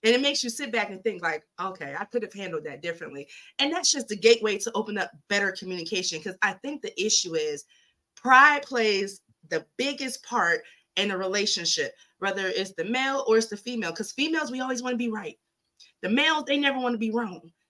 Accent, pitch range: American, 190-245 Hz